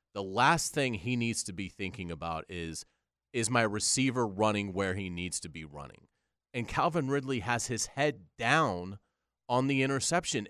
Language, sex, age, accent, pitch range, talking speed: English, male, 30-49, American, 105-150 Hz, 170 wpm